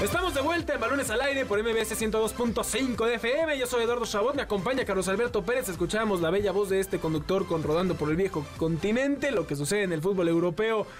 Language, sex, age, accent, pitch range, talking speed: Spanish, male, 20-39, Mexican, 175-225 Hz, 225 wpm